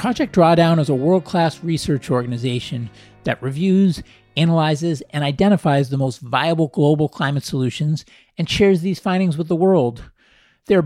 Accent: American